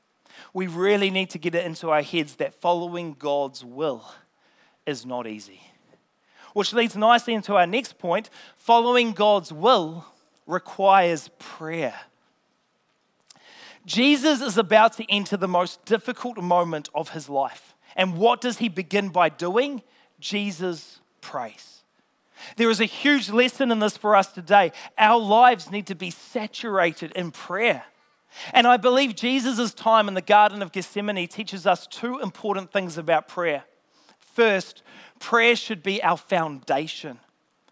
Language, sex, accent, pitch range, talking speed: English, male, Australian, 175-230 Hz, 145 wpm